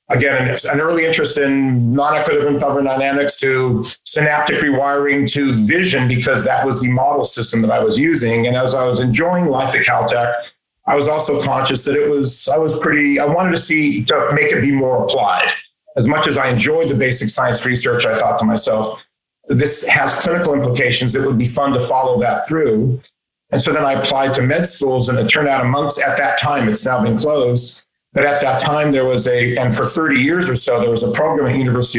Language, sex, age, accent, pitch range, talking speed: English, male, 50-69, American, 125-145 Hz, 215 wpm